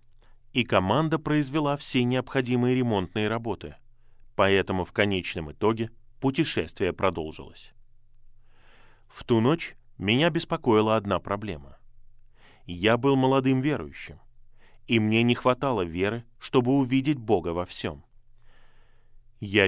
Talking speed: 105 wpm